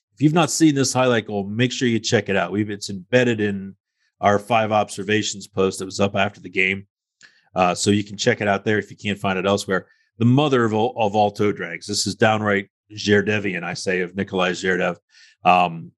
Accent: American